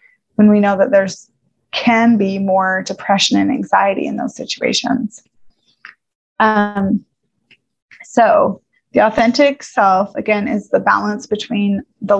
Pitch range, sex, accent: 205-225 Hz, female, American